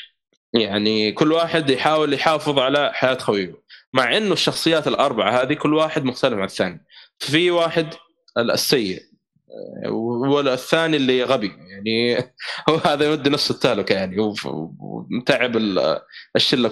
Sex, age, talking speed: male, 20-39, 120 wpm